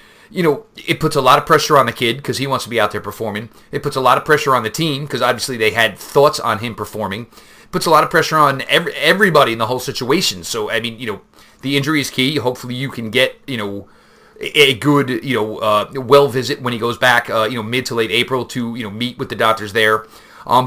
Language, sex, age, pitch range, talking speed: English, male, 30-49, 110-140 Hz, 265 wpm